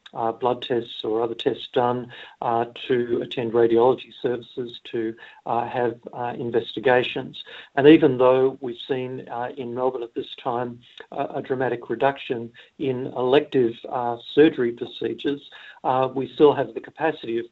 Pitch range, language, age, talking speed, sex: 120-130 Hz, English, 50-69, 150 wpm, male